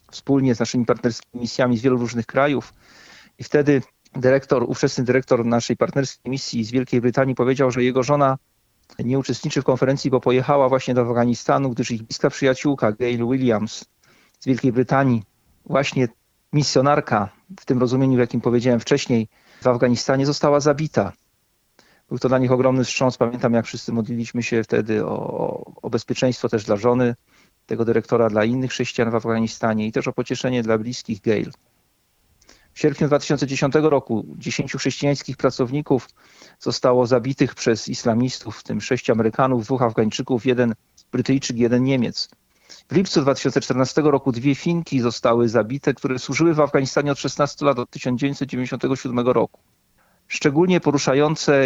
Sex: male